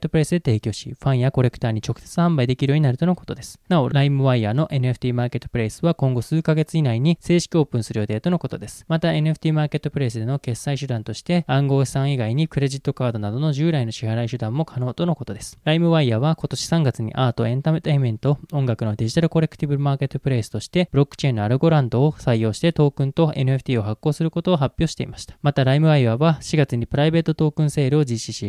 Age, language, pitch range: 20-39, Japanese, 125-155 Hz